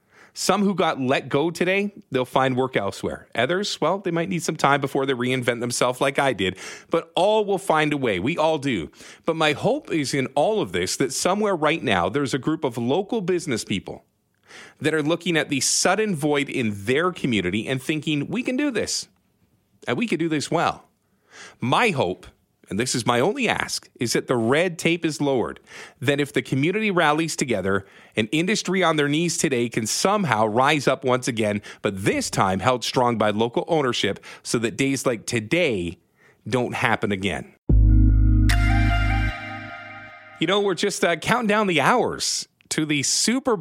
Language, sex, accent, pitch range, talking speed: English, male, American, 125-175 Hz, 185 wpm